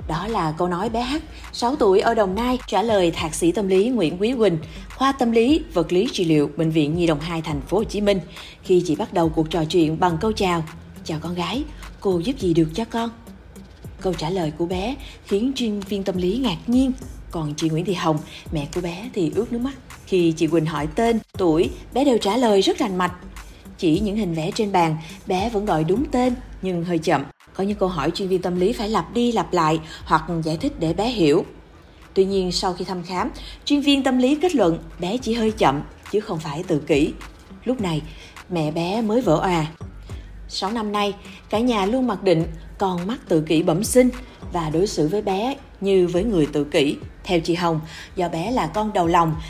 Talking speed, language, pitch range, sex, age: 225 wpm, Vietnamese, 165-230 Hz, female, 20-39